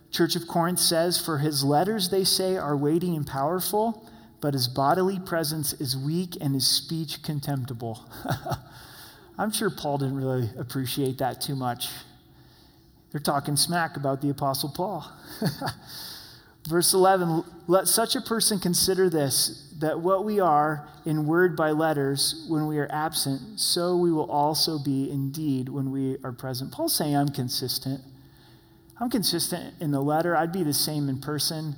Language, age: English, 30-49